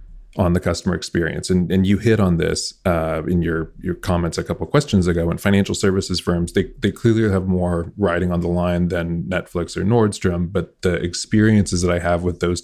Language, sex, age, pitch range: English, male, 30-49, 85-95 Hz